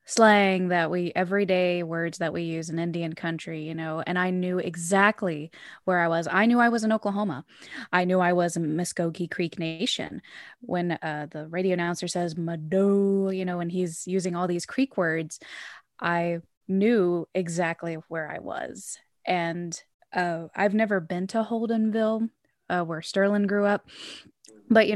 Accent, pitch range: American, 170-200 Hz